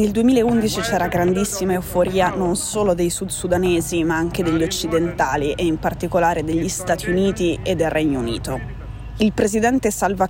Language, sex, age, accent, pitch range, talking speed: Italian, female, 20-39, native, 170-195 Hz, 155 wpm